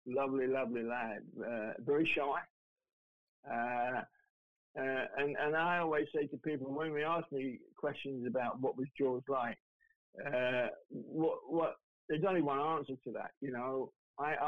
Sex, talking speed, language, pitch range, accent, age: male, 155 wpm, Finnish, 135-155 Hz, British, 50-69